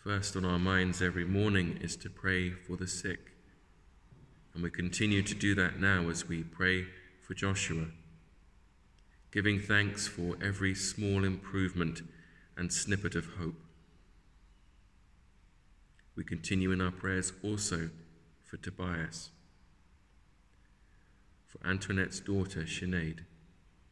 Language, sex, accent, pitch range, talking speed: English, male, British, 80-95 Hz, 115 wpm